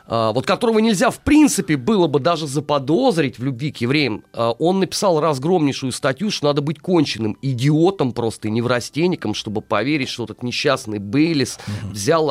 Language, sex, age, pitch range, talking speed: Russian, male, 30-49, 115-170 Hz, 155 wpm